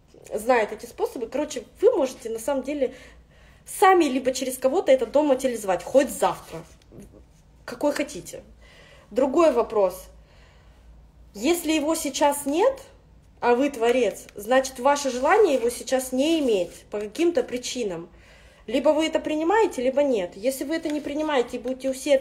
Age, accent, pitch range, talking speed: 20-39, native, 205-290 Hz, 140 wpm